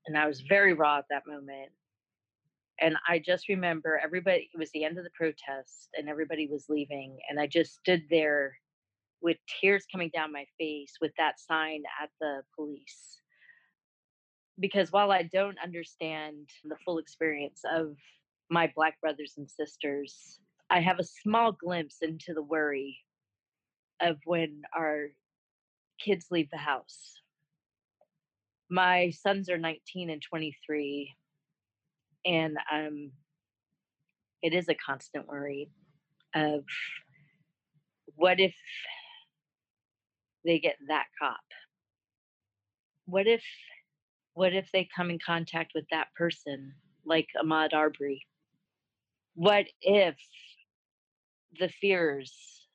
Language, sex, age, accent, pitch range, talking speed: English, female, 30-49, American, 145-175 Hz, 125 wpm